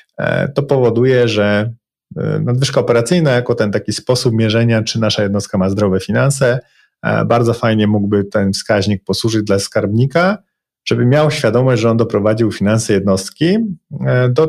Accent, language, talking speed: native, Polish, 135 wpm